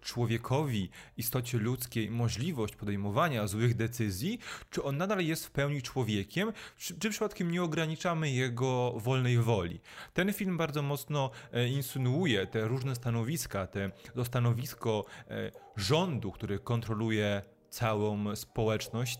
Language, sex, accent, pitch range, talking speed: Polish, male, native, 115-145 Hz, 115 wpm